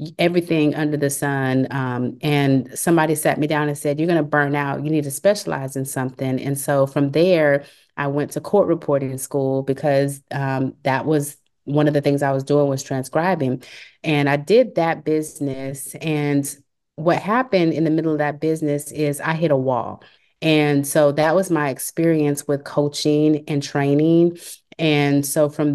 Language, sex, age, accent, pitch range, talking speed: English, female, 30-49, American, 140-160 Hz, 180 wpm